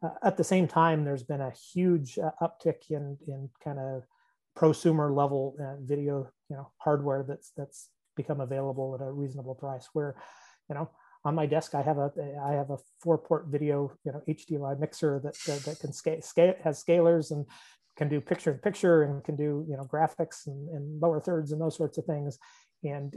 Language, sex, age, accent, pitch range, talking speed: English, male, 30-49, American, 135-155 Hz, 205 wpm